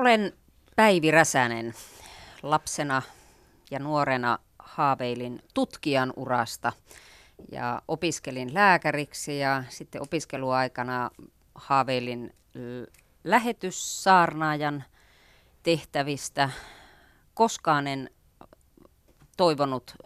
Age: 30-49